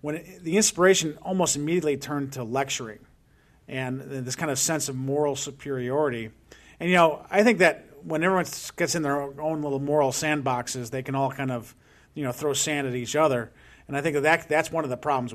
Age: 40-59